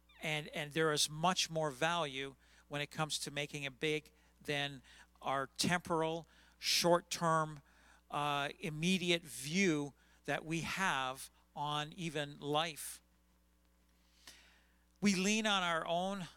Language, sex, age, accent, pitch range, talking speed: English, male, 50-69, American, 140-170 Hz, 115 wpm